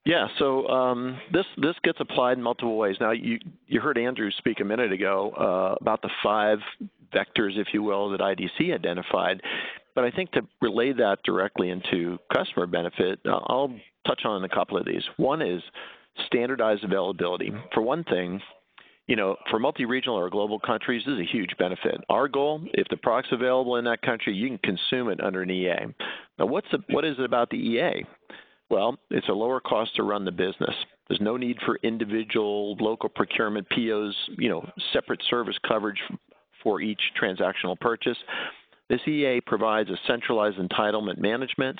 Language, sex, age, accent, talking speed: English, male, 50-69, American, 180 wpm